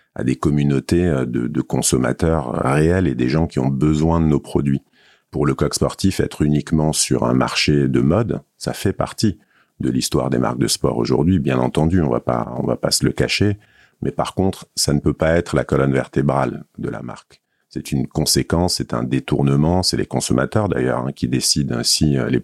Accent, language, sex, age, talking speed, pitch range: French, French, male, 50-69, 200 wpm, 65-85 Hz